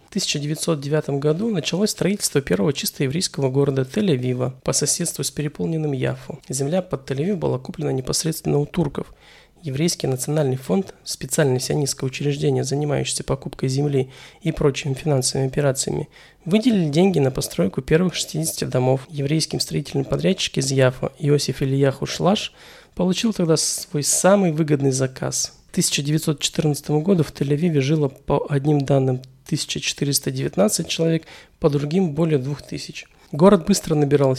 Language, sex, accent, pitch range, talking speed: Russian, male, native, 140-165 Hz, 135 wpm